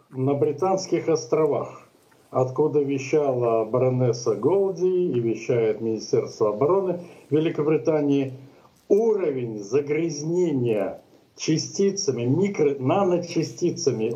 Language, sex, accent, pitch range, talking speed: Russian, male, native, 125-155 Hz, 70 wpm